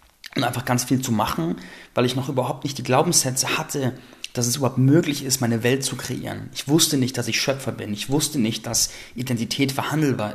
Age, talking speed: 30-49, 205 wpm